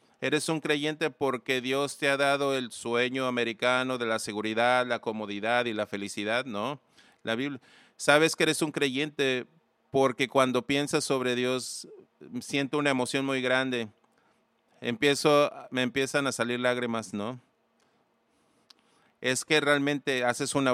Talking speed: 140 wpm